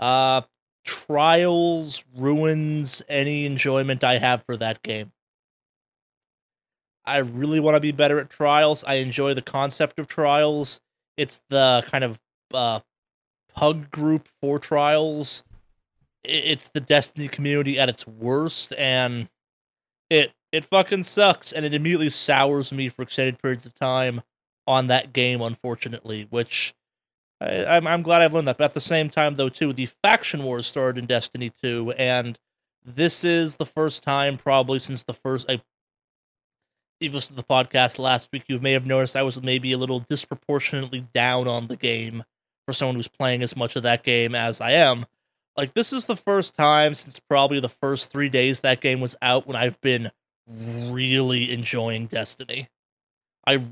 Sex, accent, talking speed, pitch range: male, American, 165 wpm, 125-145 Hz